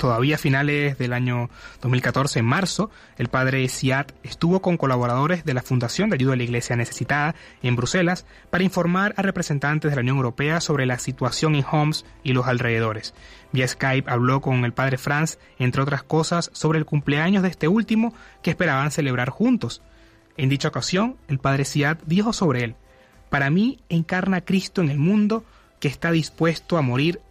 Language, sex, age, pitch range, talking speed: Spanish, male, 30-49, 125-175 Hz, 180 wpm